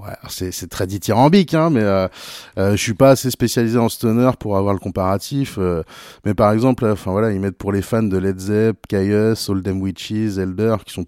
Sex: male